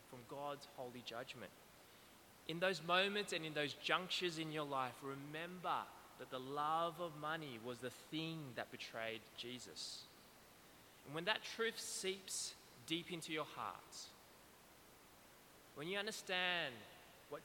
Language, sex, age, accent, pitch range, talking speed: English, male, 20-39, Australian, 135-175 Hz, 130 wpm